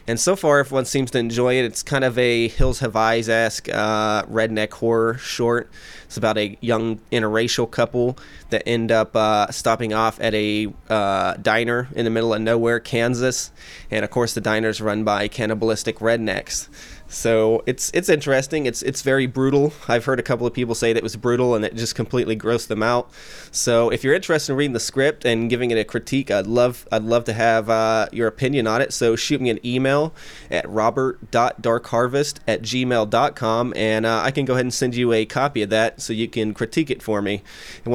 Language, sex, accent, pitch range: English, male, American, 110-125 Hz